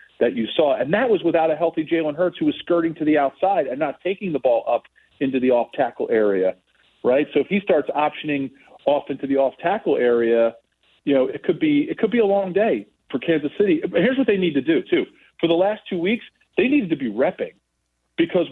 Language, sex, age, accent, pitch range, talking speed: English, male, 40-59, American, 130-180 Hz, 230 wpm